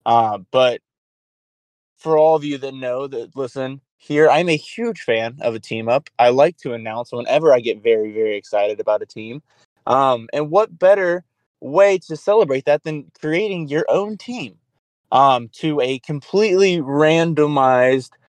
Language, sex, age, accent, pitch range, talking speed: English, male, 20-39, American, 120-155 Hz, 165 wpm